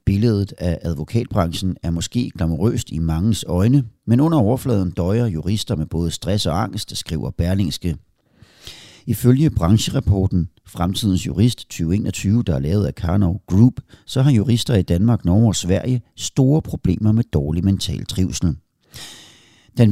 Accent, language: native, Danish